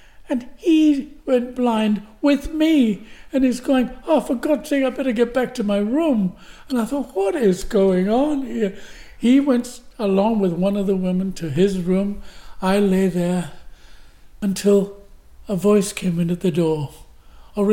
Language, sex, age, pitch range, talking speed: English, male, 60-79, 175-215 Hz, 175 wpm